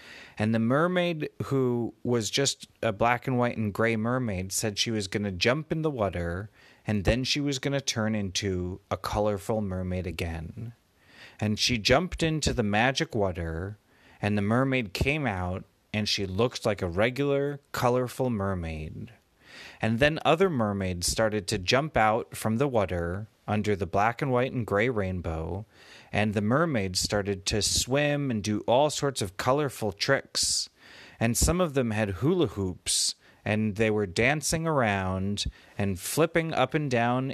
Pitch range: 100-135 Hz